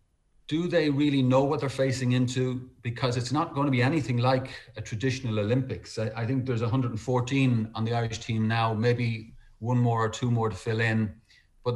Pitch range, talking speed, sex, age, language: 110-135 Hz, 200 wpm, male, 40-59, English